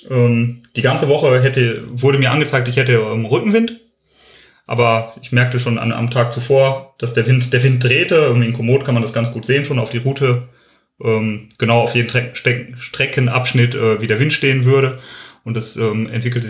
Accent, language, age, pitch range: German, German, 30-49, 115-130 Hz